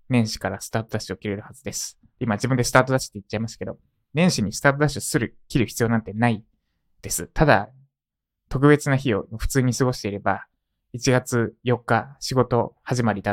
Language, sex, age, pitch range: Japanese, male, 20-39, 105-135 Hz